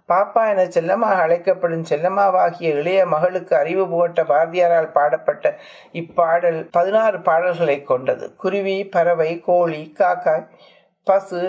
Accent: native